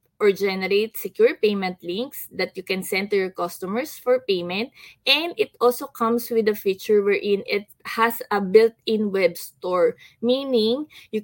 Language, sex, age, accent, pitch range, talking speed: English, female, 20-39, Filipino, 190-240 Hz, 160 wpm